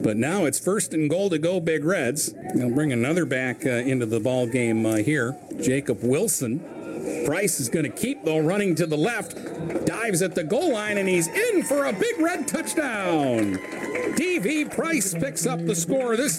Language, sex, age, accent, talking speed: English, male, 50-69, American, 185 wpm